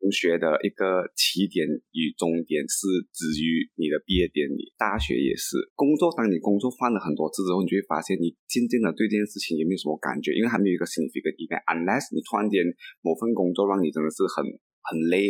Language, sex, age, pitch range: Chinese, male, 20-39, 85-115 Hz